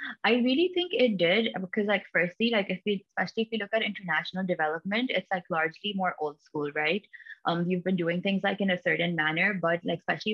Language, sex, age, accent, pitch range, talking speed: English, female, 20-39, Indian, 160-190 Hz, 220 wpm